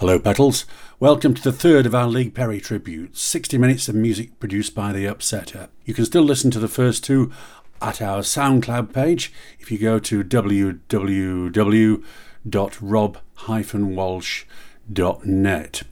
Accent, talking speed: British, 135 wpm